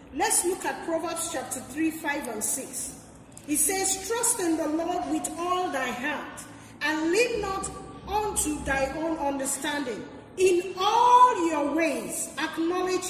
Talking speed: 140 wpm